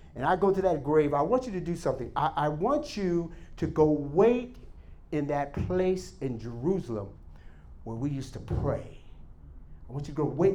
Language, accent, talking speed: English, American, 200 wpm